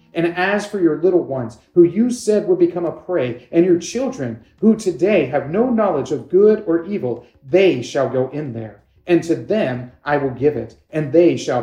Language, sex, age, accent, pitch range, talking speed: English, male, 40-59, American, 125-180 Hz, 205 wpm